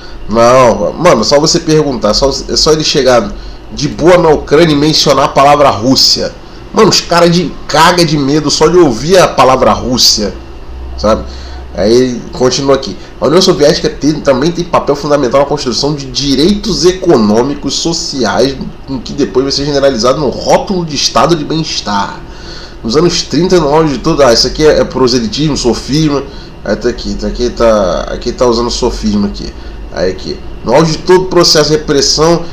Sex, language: male, Portuguese